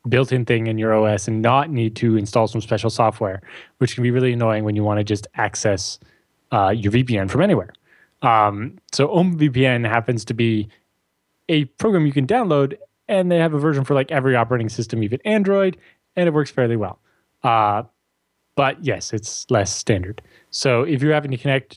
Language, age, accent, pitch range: English, 20-39, American, 110-140 Hz